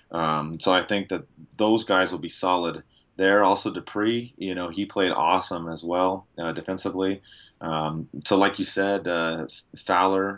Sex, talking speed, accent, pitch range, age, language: male, 170 wpm, American, 85-100 Hz, 30-49, English